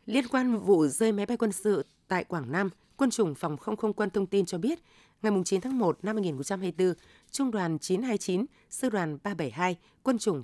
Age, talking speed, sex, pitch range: 20-39, 200 wpm, female, 170-220 Hz